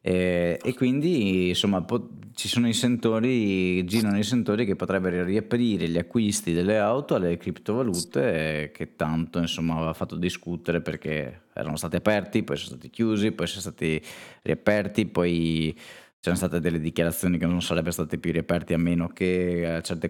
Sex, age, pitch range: male, 20-39, 80-95 Hz